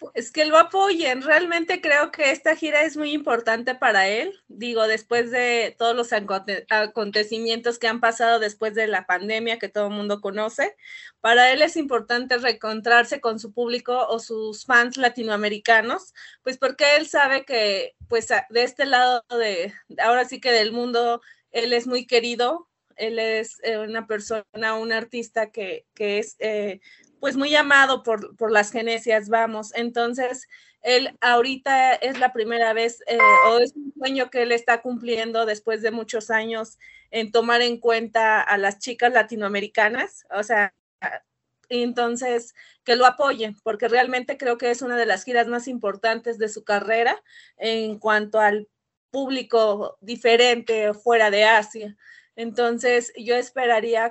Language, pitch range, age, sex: English, 220-250 Hz, 20-39, female